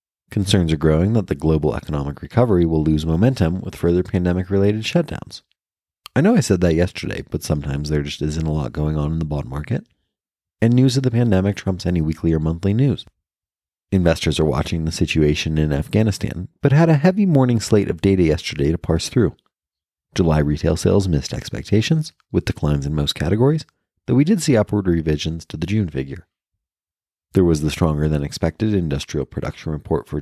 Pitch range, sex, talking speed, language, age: 80-105 Hz, male, 185 wpm, English, 30-49